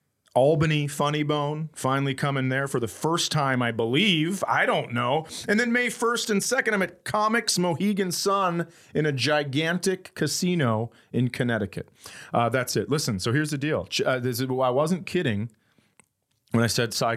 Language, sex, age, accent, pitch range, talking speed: English, male, 30-49, American, 100-160 Hz, 165 wpm